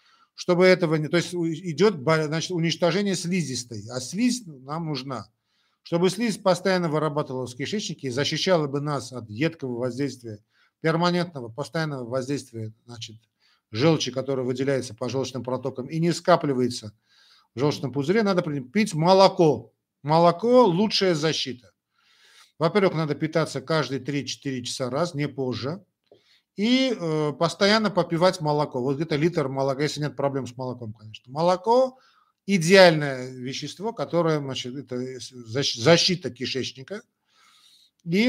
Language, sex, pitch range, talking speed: Russian, male, 130-175 Hz, 130 wpm